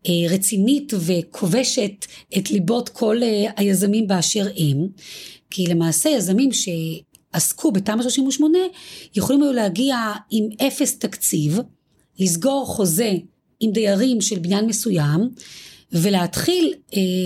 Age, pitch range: 30-49, 190-265 Hz